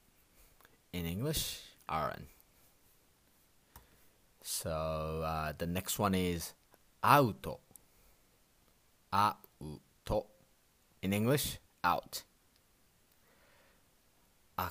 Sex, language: male, Japanese